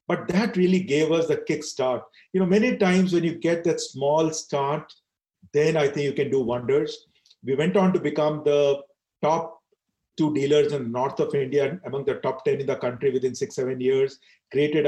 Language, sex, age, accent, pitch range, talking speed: English, male, 40-59, Indian, 140-205 Hz, 200 wpm